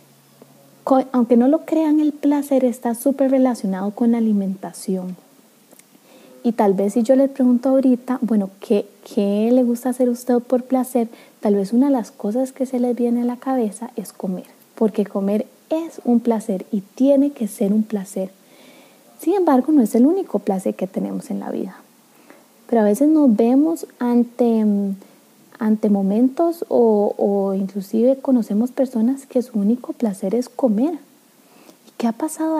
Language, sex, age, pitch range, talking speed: Spanish, female, 20-39, 215-265 Hz, 170 wpm